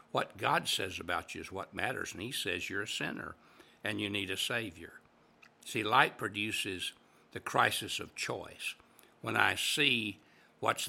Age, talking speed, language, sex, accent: 60-79, 165 wpm, English, male, American